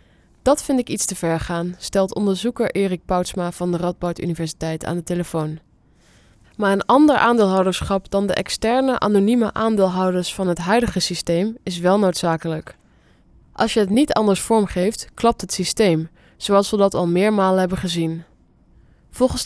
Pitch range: 175-220 Hz